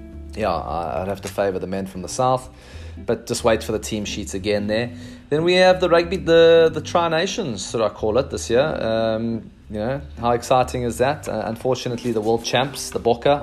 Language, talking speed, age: English, 210 wpm, 20-39